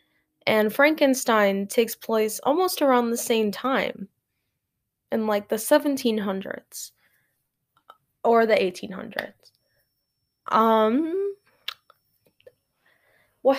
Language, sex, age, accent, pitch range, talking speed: English, female, 10-29, American, 205-255 Hz, 80 wpm